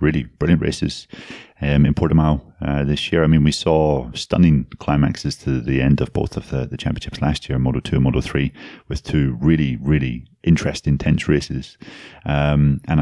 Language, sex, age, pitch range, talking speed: English, male, 30-49, 70-75 Hz, 180 wpm